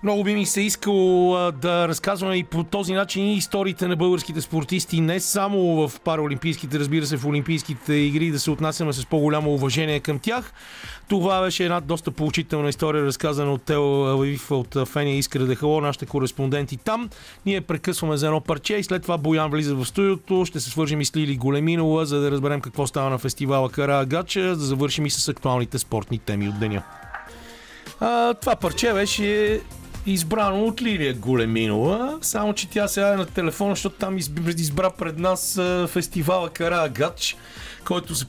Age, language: 40-59, Bulgarian